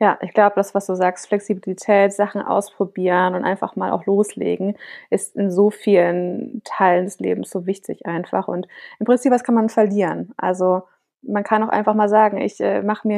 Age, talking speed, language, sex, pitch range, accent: 20-39, 195 wpm, German, female, 195-220 Hz, German